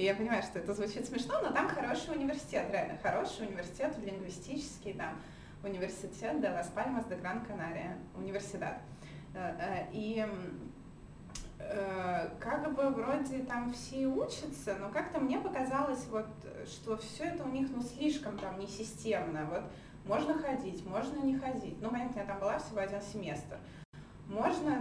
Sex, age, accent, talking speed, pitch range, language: female, 20-39, native, 140 wpm, 190-260 Hz, Russian